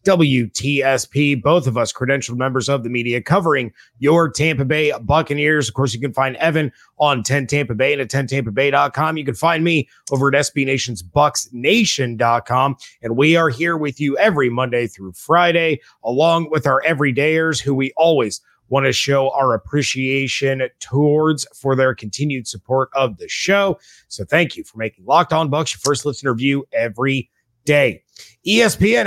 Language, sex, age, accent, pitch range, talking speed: English, male, 30-49, American, 130-160 Hz, 165 wpm